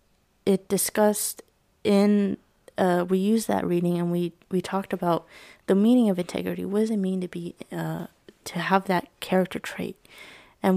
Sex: female